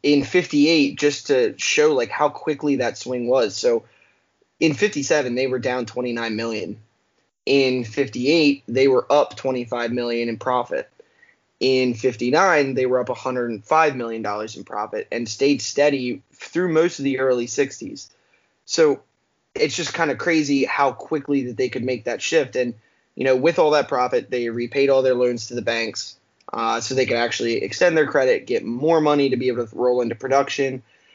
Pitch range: 120-145 Hz